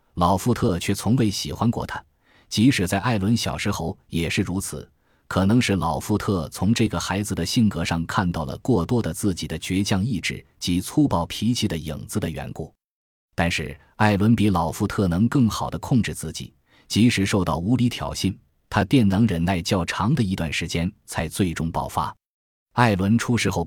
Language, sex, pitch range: Chinese, male, 85-115 Hz